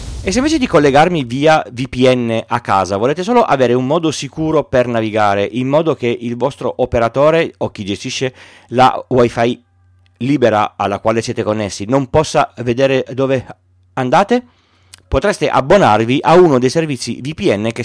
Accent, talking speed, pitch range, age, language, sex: native, 155 wpm, 105-140 Hz, 30-49, Italian, male